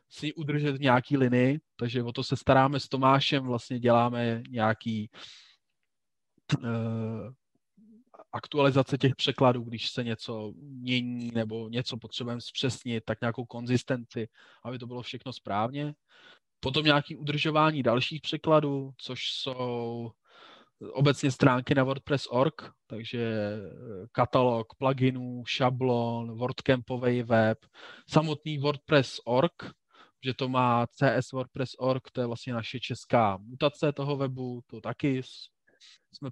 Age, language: 20-39, Czech